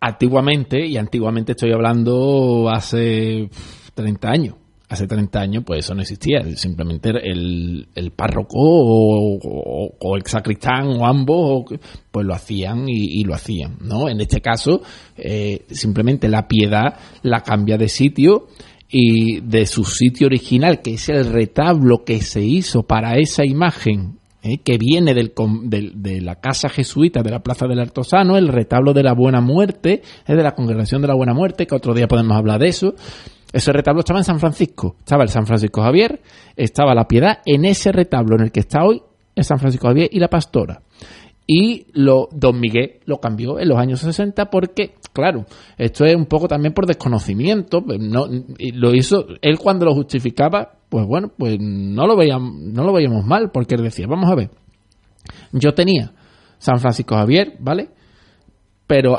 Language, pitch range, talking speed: Spanish, 110-150 Hz, 175 wpm